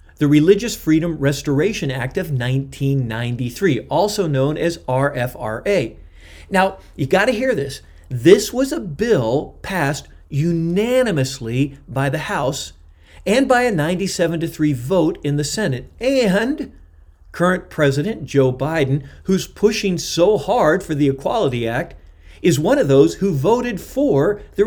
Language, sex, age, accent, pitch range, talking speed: English, male, 40-59, American, 125-190 Hz, 135 wpm